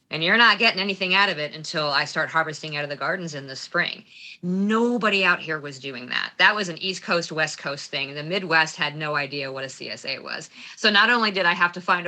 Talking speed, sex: 250 wpm, female